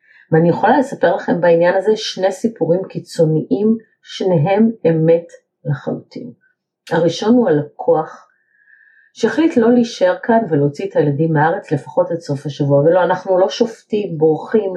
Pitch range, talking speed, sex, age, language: 155-225 Hz, 130 wpm, female, 40-59, Hebrew